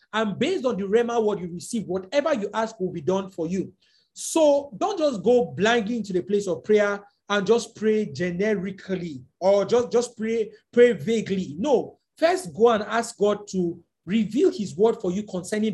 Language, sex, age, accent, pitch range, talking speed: English, male, 40-59, Nigerian, 180-230 Hz, 185 wpm